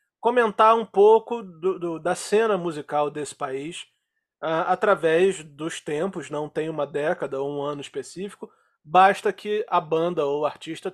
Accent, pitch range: Brazilian, 160-220 Hz